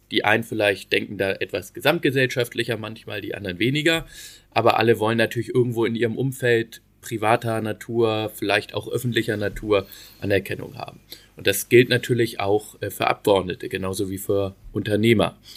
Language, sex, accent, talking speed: German, male, German, 145 wpm